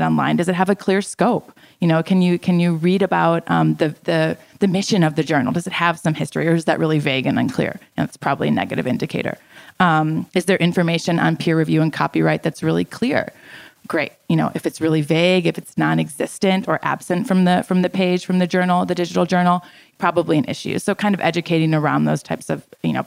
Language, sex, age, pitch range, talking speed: English, female, 20-39, 160-190 Hz, 235 wpm